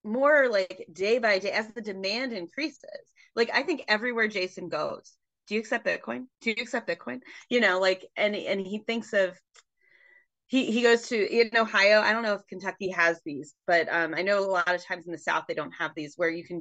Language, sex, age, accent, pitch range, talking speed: English, female, 30-49, American, 170-230 Hz, 225 wpm